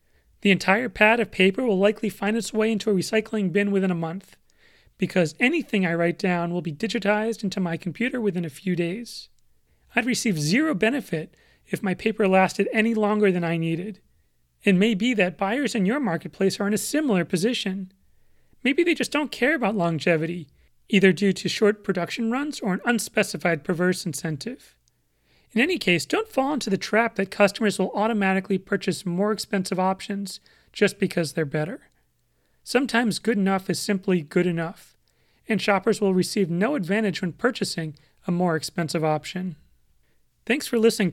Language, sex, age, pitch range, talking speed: English, male, 30-49, 175-215 Hz, 170 wpm